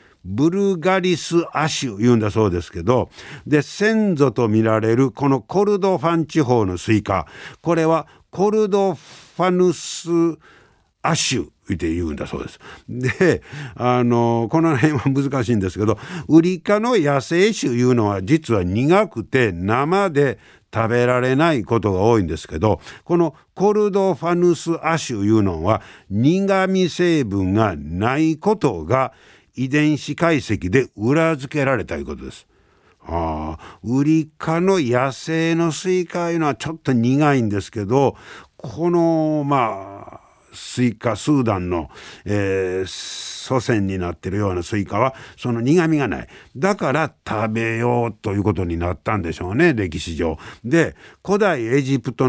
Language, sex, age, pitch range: Japanese, male, 60-79, 110-165 Hz